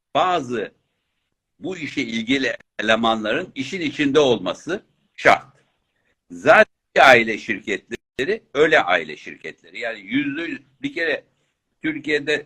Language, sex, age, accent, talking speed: Turkish, male, 60-79, native, 100 wpm